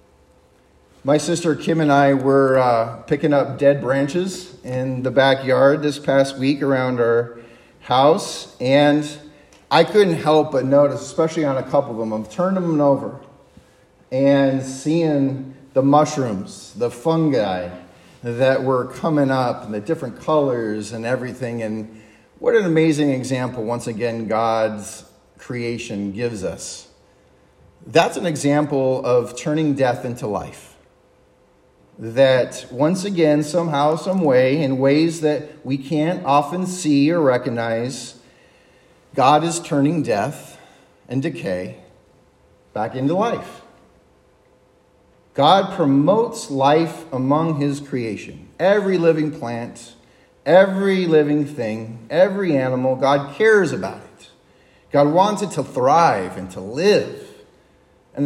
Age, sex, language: 40-59, male, English